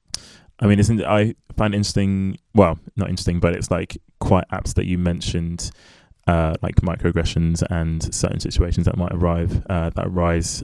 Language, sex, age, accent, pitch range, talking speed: English, male, 20-39, British, 85-95 Hz, 175 wpm